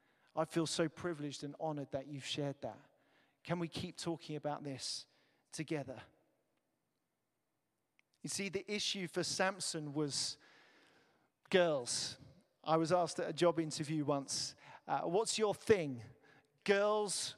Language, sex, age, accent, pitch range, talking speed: English, male, 40-59, British, 150-180 Hz, 130 wpm